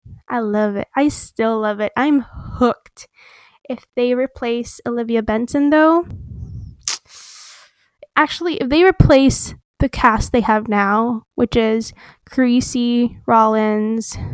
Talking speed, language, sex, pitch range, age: 115 wpm, English, female, 220-260 Hz, 10-29